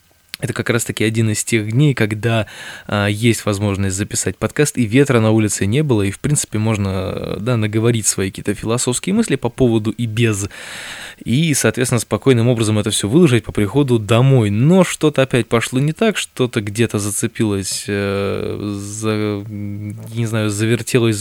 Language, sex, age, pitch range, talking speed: Russian, male, 20-39, 105-125 Hz, 155 wpm